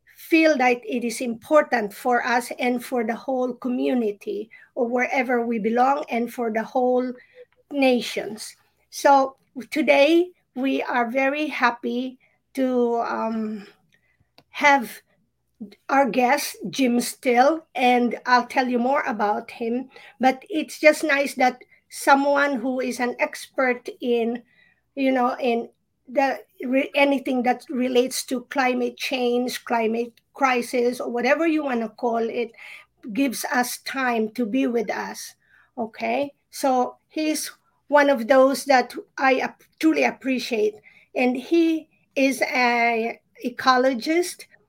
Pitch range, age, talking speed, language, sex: 240-280 Hz, 50-69, 125 wpm, English, female